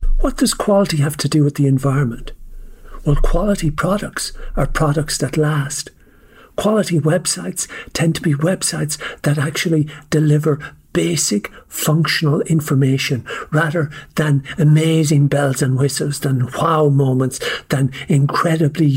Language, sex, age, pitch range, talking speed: English, male, 60-79, 135-155 Hz, 125 wpm